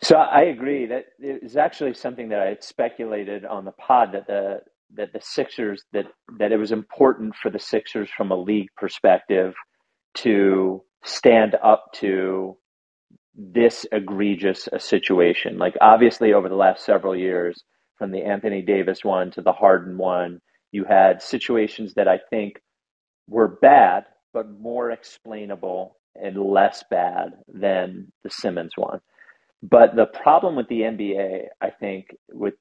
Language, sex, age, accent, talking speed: English, male, 40-59, American, 155 wpm